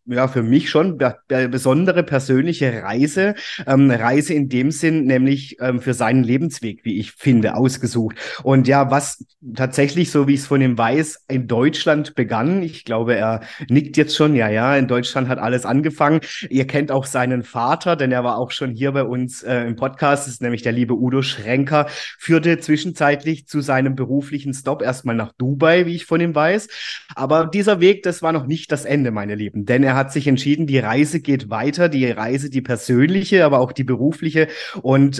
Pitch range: 125-150 Hz